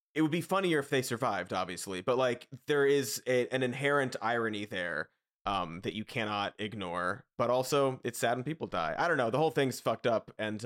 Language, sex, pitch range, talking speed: English, male, 110-145 Hz, 215 wpm